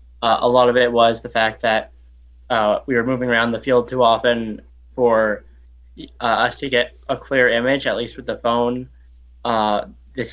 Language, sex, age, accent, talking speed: English, male, 10-29, American, 185 wpm